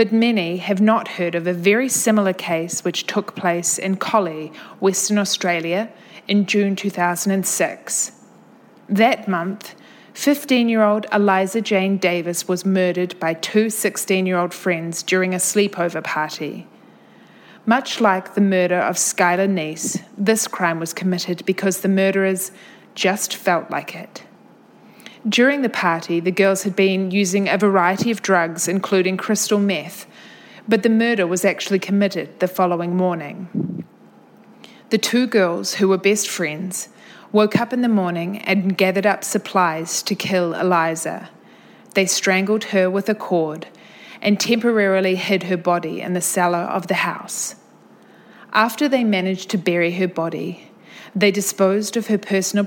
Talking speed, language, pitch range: 145 wpm, English, 180-215 Hz